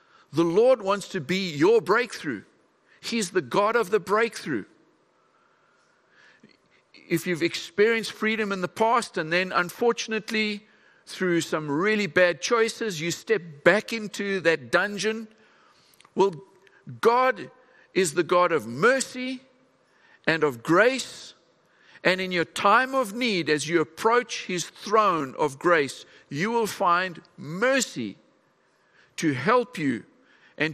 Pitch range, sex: 165-220 Hz, male